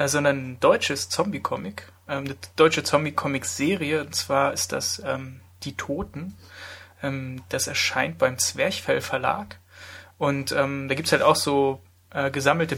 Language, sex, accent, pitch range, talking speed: German, male, German, 115-145 Hz, 135 wpm